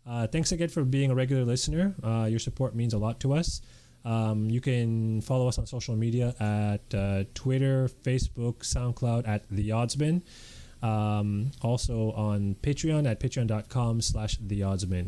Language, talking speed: English, 150 wpm